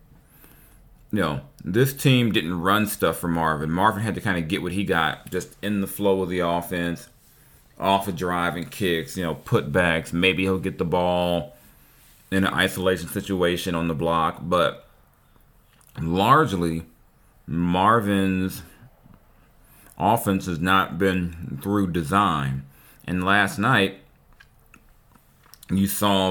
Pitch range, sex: 85-100 Hz, male